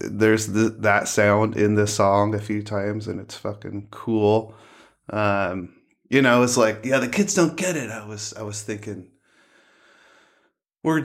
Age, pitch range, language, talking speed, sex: 20-39, 105-115 Hz, English, 170 wpm, male